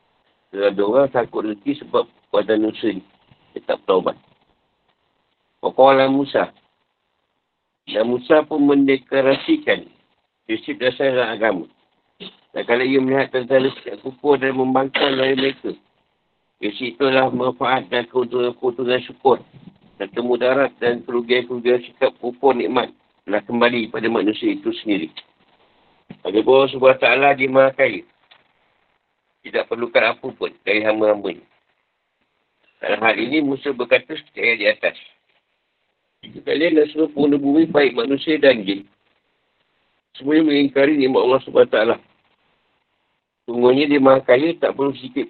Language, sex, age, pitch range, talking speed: Malay, male, 50-69, 125-145 Hz, 120 wpm